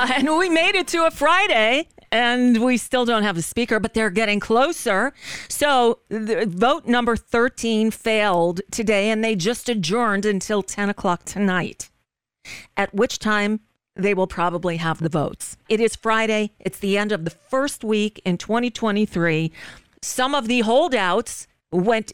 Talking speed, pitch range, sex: 160 wpm, 185-240 Hz, female